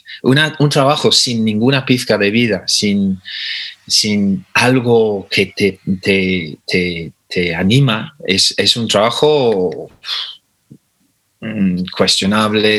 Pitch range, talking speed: 100-125 Hz, 105 wpm